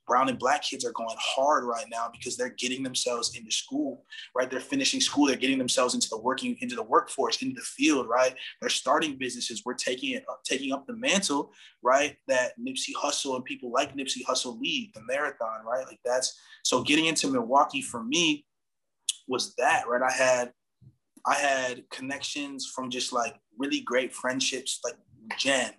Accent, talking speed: American, 185 wpm